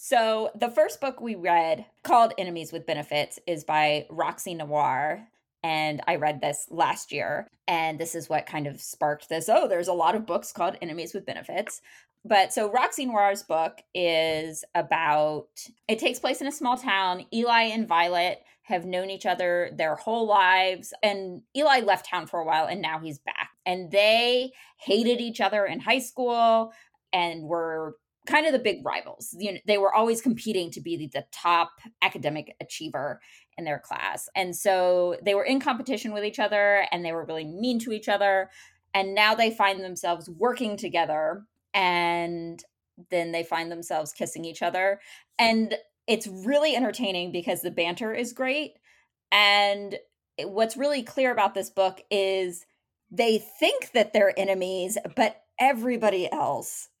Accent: American